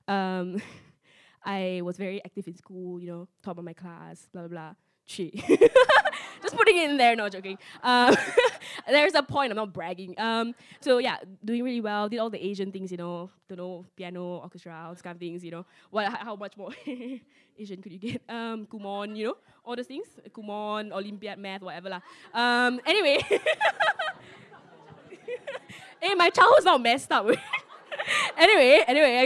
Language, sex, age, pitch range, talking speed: English, female, 10-29, 185-250 Hz, 175 wpm